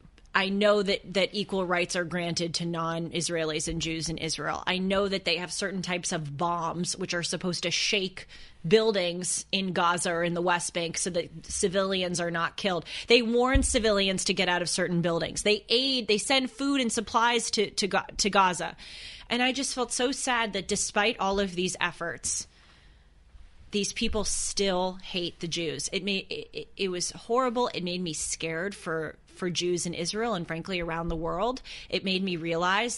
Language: English